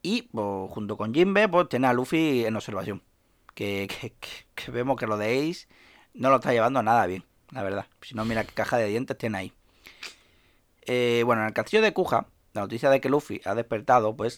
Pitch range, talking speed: 110-150 Hz, 215 wpm